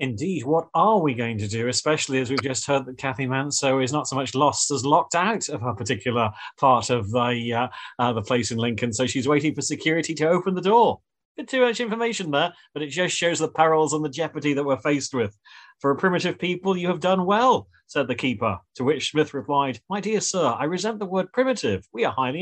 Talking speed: 235 wpm